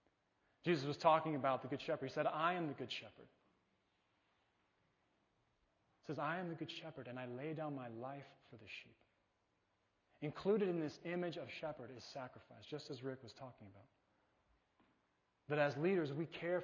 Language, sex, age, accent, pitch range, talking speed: English, male, 30-49, American, 115-150 Hz, 175 wpm